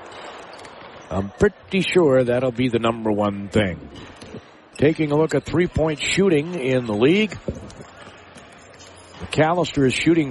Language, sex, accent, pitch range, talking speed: English, male, American, 120-160 Hz, 120 wpm